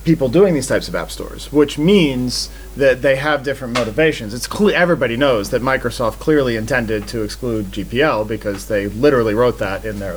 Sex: male